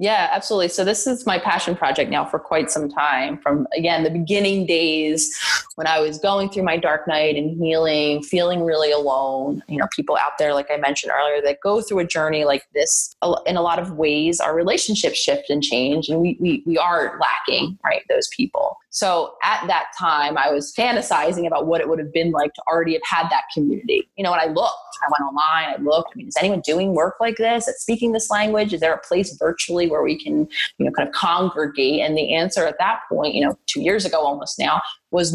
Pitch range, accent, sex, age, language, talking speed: 155-195 Hz, American, female, 20-39, English, 230 wpm